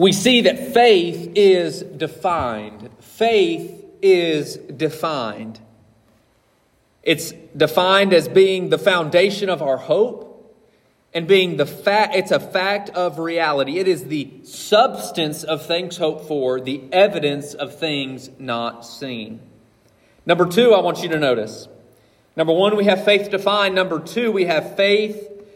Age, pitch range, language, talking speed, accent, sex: 40-59, 150-215 Hz, English, 140 wpm, American, male